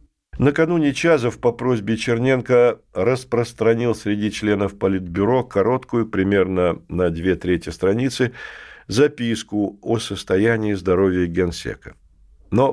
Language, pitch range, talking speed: Russian, 95-125 Hz, 100 wpm